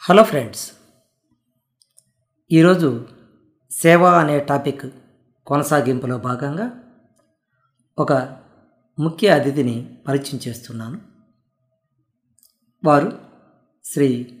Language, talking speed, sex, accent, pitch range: Telugu, 60 wpm, female, native, 125-165 Hz